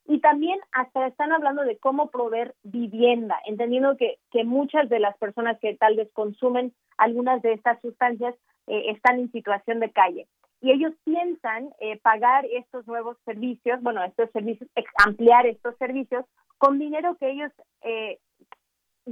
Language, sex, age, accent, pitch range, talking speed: Spanish, female, 40-59, Mexican, 215-265 Hz, 155 wpm